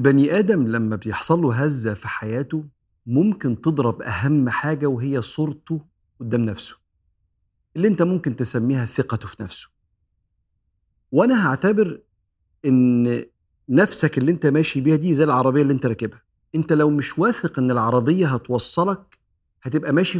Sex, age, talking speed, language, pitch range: male, 40-59, 135 wpm, Arabic, 115-160 Hz